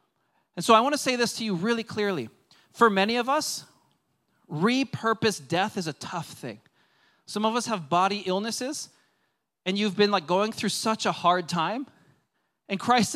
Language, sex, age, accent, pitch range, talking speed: English, male, 40-59, American, 170-225 Hz, 180 wpm